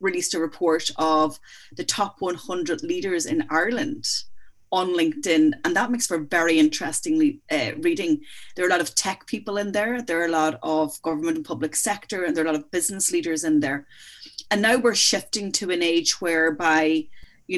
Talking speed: 195 wpm